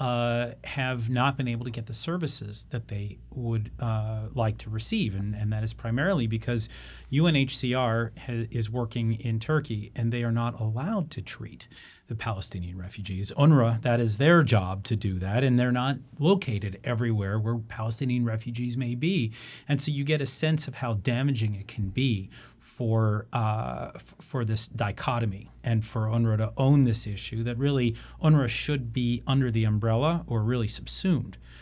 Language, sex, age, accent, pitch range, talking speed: English, male, 30-49, American, 110-125 Hz, 170 wpm